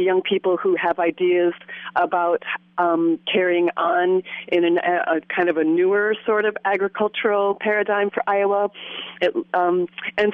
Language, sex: English, female